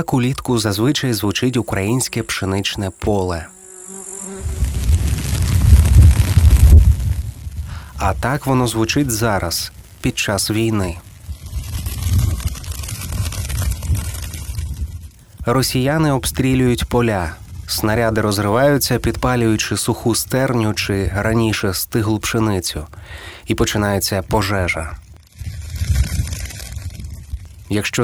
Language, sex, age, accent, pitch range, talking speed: Ukrainian, male, 30-49, native, 95-120 Hz, 65 wpm